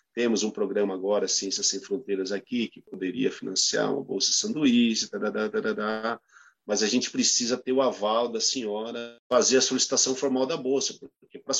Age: 50-69